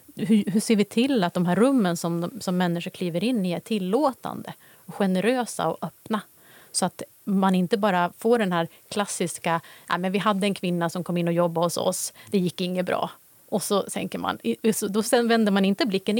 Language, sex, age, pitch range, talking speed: Swedish, female, 30-49, 180-230 Hz, 205 wpm